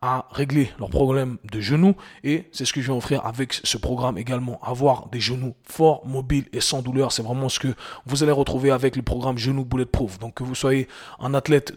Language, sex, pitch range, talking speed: French, male, 125-145 Hz, 225 wpm